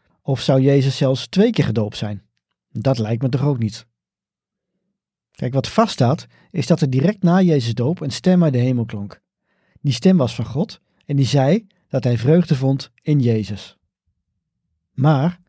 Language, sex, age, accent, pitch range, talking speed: Dutch, male, 40-59, Dutch, 120-165 Hz, 175 wpm